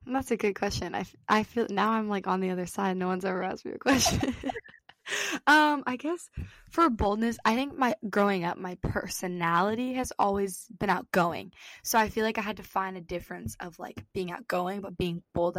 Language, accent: English, American